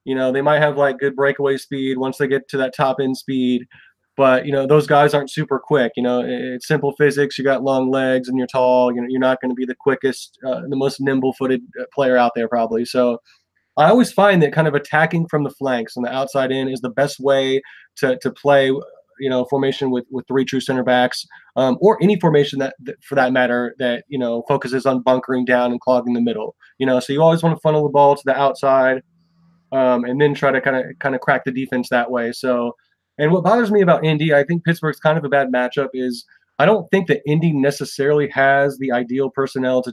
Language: English